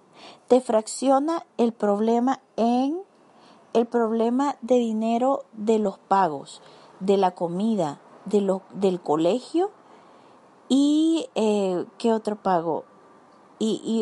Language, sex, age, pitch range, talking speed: Spanish, female, 40-59, 200-250 Hz, 110 wpm